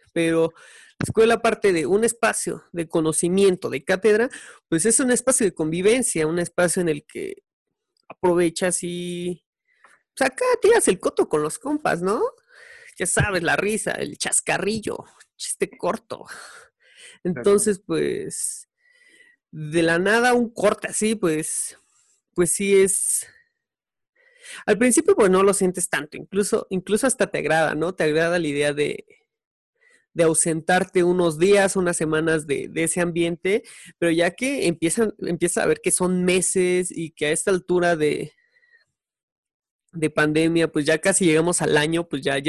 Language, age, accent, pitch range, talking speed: Spanish, 30-49, Mexican, 165-235 Hz, 155 wpm